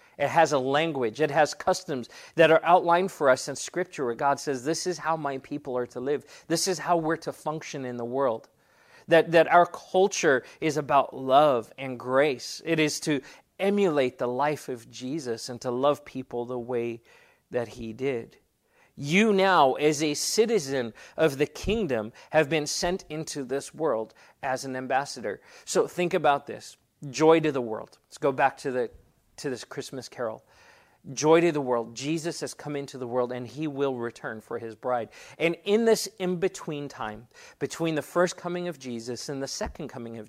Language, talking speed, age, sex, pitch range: English, 190 wpm, 40-59, male, 125-165 Hz